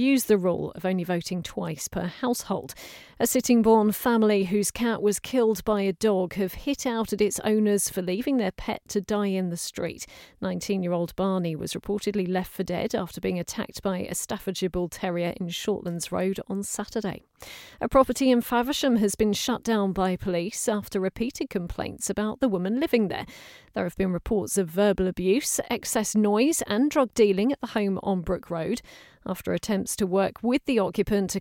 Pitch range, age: 185-220 Hz, 40-59